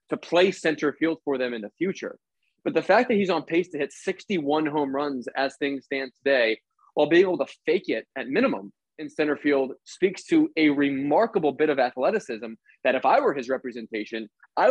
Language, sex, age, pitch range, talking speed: English, male, 20-39, 140-185 Hz, 205 wpm